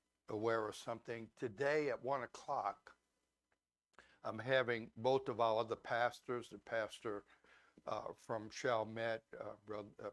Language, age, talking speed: English, 60-79, 125 wpm